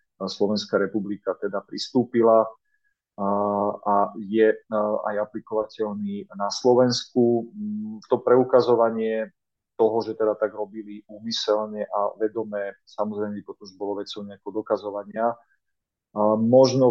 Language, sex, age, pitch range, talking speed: Slovak, male, 40-59, 105-115 Hz, 95 wpm